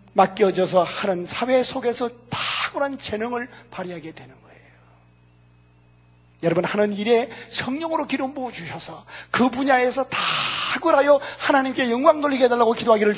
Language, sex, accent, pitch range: Korean, male, native, 210-275 Hz